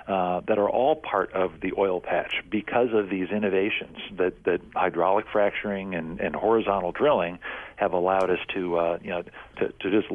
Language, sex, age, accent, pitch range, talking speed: English, male, 50-69, American, 90-105 Hz, 185 wpm